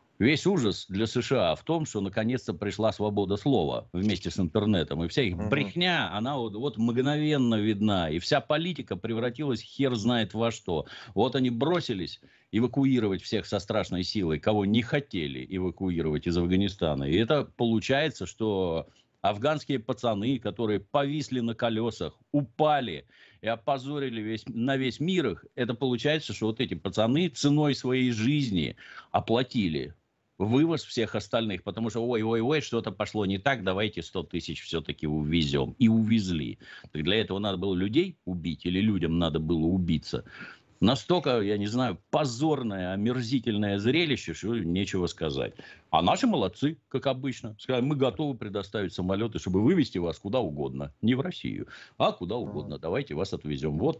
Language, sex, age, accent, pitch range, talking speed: Russian, male, 50-69, native, 95-130 Hz, 150 wpm